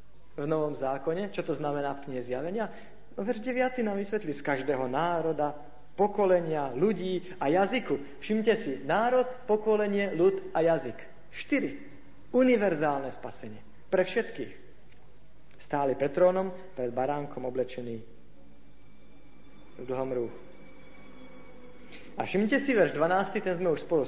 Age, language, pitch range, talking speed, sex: 50-69, Slovak, 160-215 Hz, 120 wpm, male